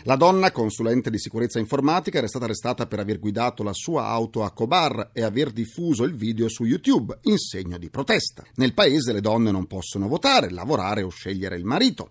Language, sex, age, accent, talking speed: Italian, male, 40-59, native, 200 wpm